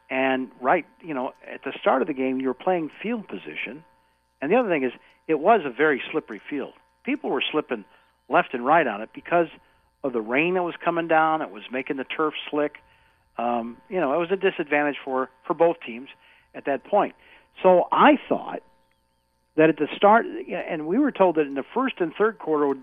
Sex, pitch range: male, 120-160 Hz